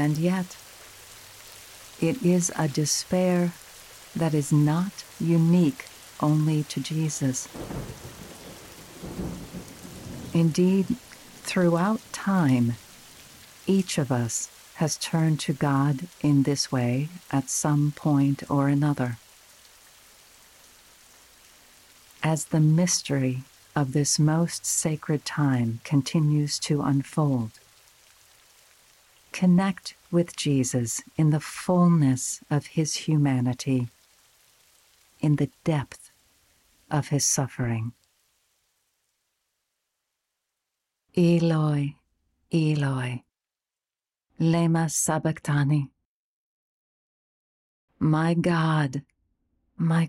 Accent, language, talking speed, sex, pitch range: American, English, 75 wpm, female, 130-165 Hz